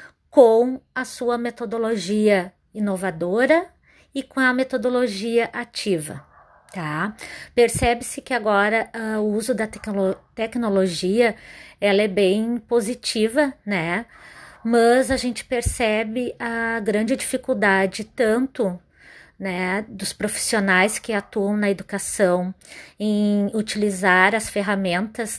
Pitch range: 200-235 Hz